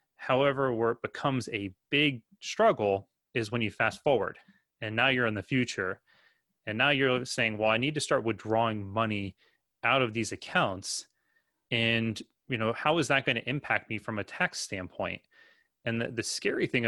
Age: 30-49